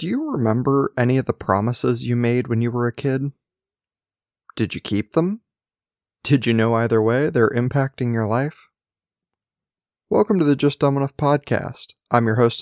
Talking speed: 175 wpm